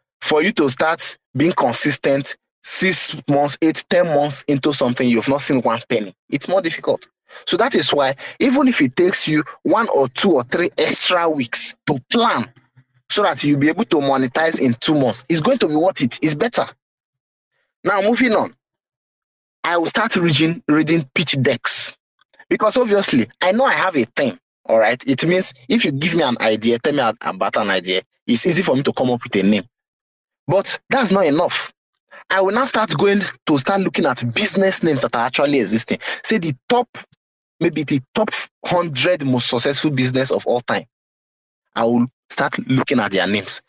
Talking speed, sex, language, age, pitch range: 190 wpm, male, English, 30-49, 125-190 Hz